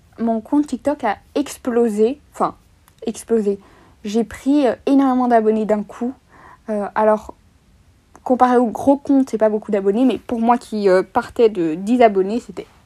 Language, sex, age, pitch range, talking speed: French, female, 20-39, 210-245 Hz, 160 wpm